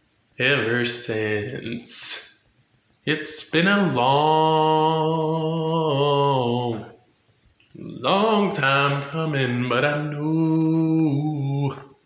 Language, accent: English, American